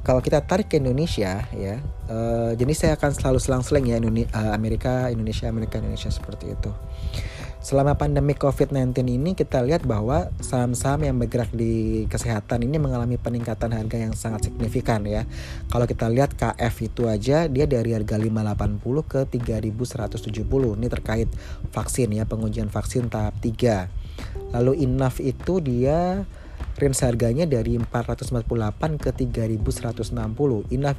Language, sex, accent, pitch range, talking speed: Indonesian, male, native, 110-130 Hz, 135 wpm